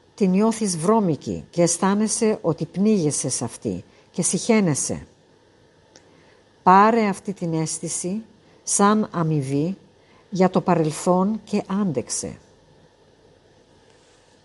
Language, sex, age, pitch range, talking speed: Greek, female, 50-69, 160-205 Hz, 90 wpm